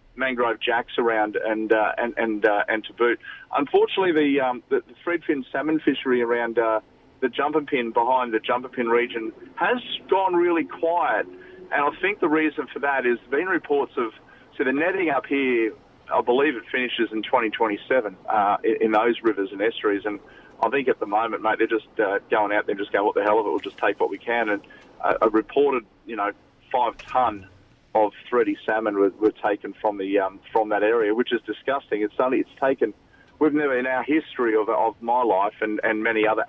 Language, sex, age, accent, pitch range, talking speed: English, male, 40-59, Australian, 110-150 Hz, 210 wpm